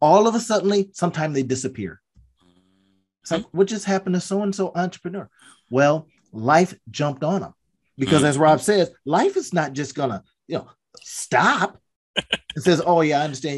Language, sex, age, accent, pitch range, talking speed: English, male, 30-49, American, 110-160 Hz, 175 wpm